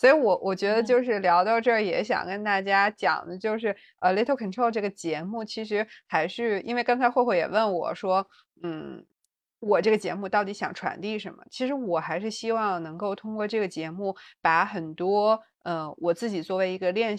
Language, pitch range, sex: Chinese, 175-220 Hz, female